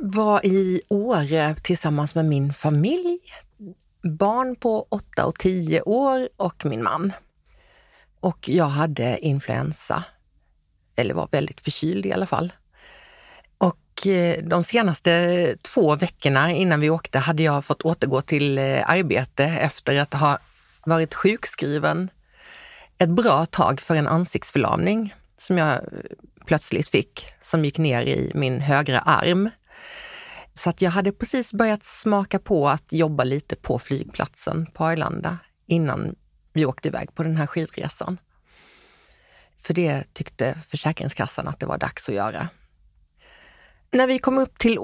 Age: 40-59